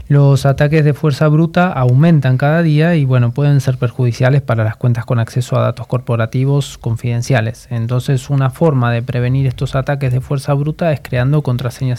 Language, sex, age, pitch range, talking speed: Spanish, male, 20-39, 120-140 Hz, 175 wpm